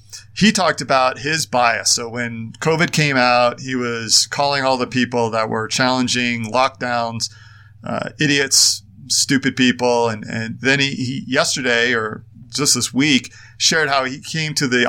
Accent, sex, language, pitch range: American, male, English, 115-145 Hz